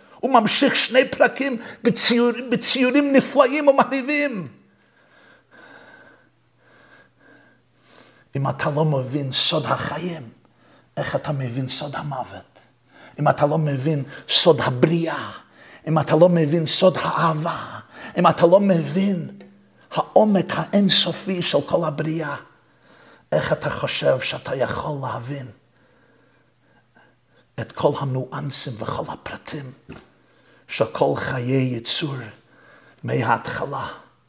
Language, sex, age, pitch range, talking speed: Hebrew, male, 50-69, 125-185 Hz, 100 wpm